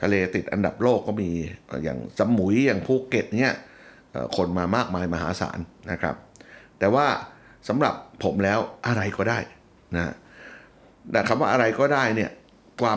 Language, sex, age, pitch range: Thai, male, 60-79, 95-125 Hz